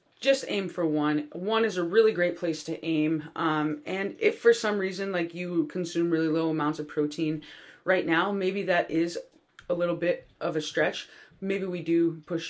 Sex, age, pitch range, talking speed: female, 20-39, 155-190 Hz, 195 wpm